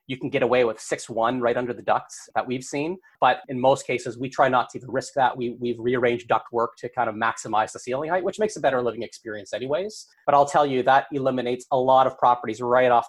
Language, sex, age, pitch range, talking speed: English, male, 30-49, 120-140 Hz, 260 wpm